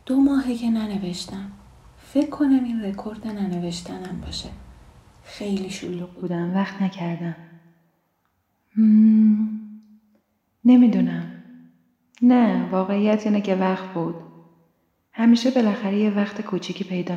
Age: 30-49